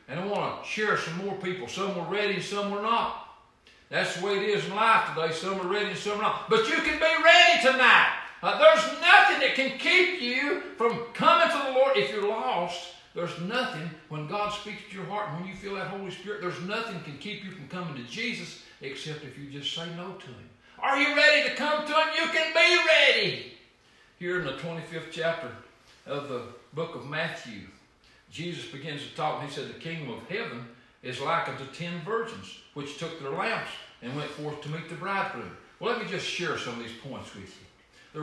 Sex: male